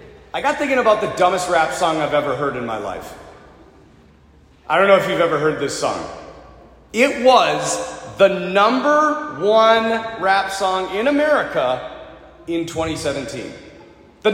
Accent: American